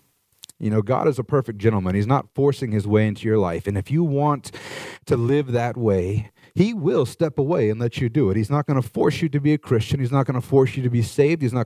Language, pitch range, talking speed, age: English, 110-145 Hz, 275 wpm, 40-59